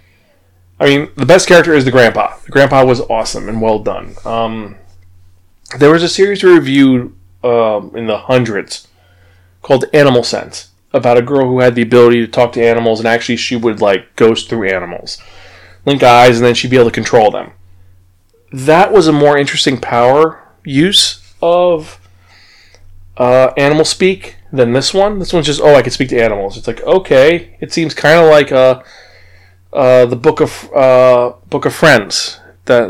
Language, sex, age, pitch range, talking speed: English, male, 20-39, 95-140 Hz, 180 wpm